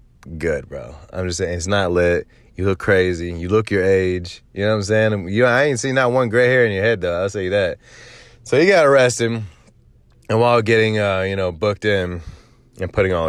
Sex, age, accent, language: male, 20-39, American, English